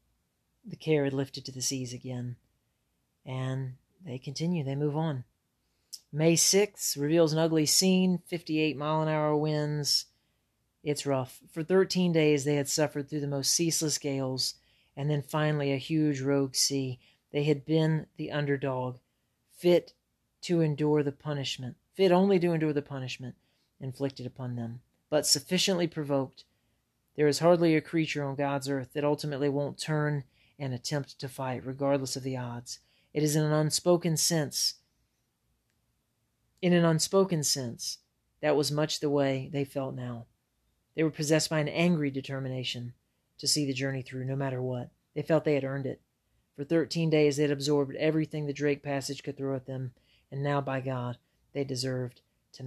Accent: American